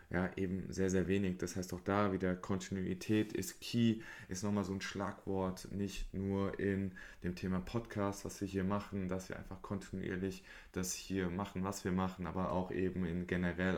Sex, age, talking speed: male, 20-39, 185 wpm